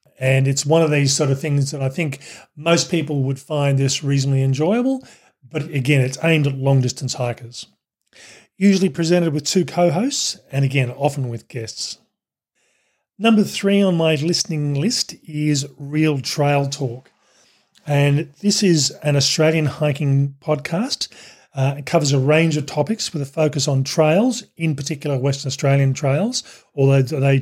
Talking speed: 155 wpm